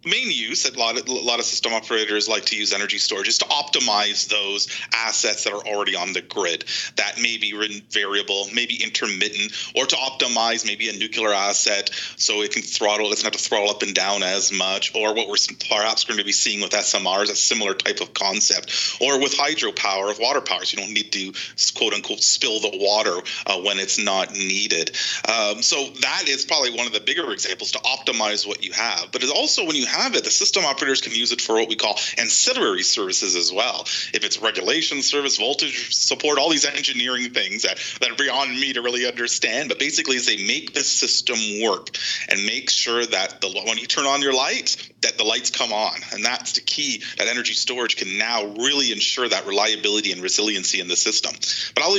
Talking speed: 210 wpm